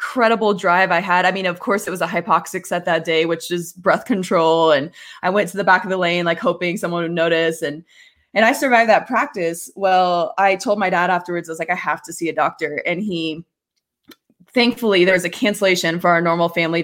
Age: 20-39